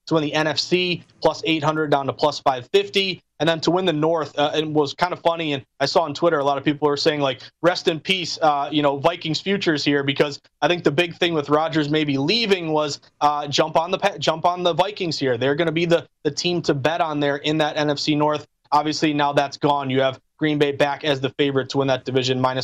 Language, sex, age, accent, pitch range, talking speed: English, male, 30-49, American, 145-180 Hz, 250 wpm